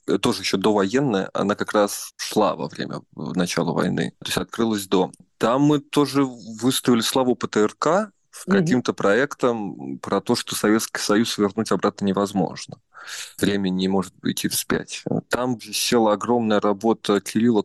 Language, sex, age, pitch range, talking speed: Russian, male, 20-39, 105-140 Hz, 145 wpm